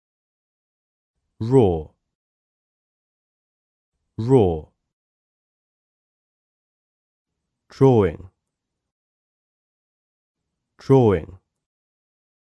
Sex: male